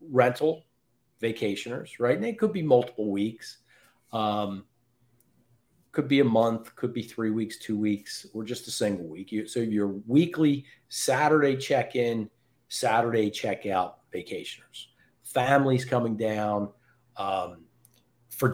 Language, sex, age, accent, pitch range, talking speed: English, male, 40-59, American, 110-125 Hz, 125 wpm